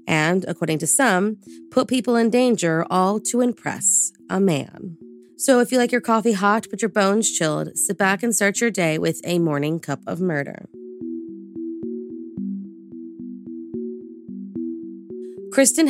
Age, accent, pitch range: 30-49, American, 160-215 Hz